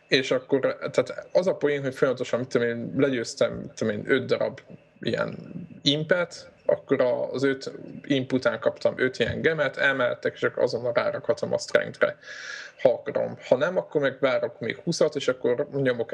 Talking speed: 150 wpm